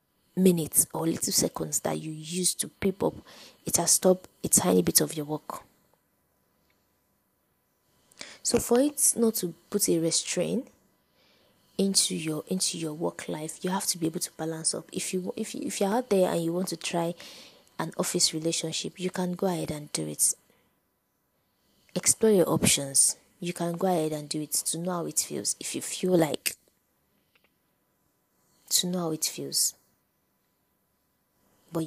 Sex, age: female, 20-39